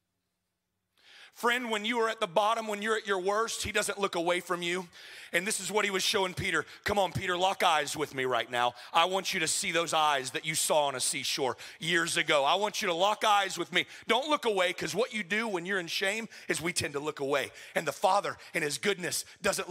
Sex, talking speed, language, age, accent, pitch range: male, 250 wpm, English, 40-59, American, 180-220 Hz